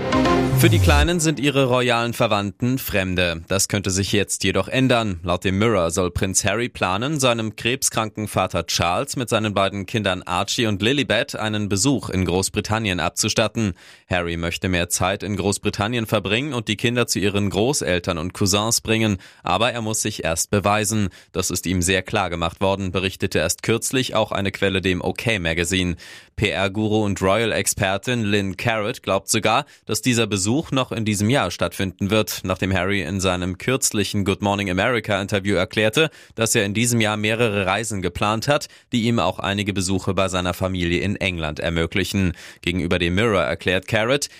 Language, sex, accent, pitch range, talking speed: German, male, German, 95-115 Hz, 170 wpm